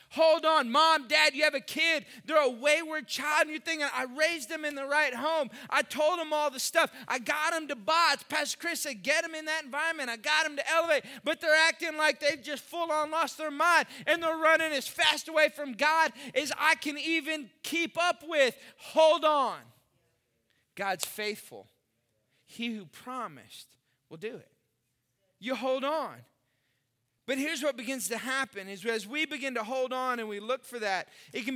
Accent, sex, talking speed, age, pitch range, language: American, male, 200 wpm, 20-39, 225-310 Hz, English